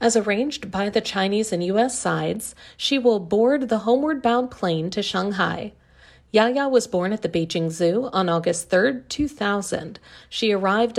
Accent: American